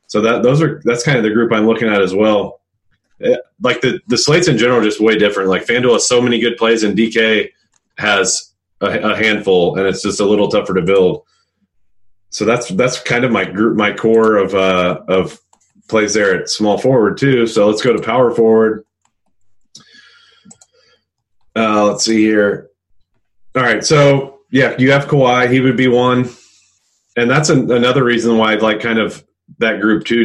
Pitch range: 100-120 Hz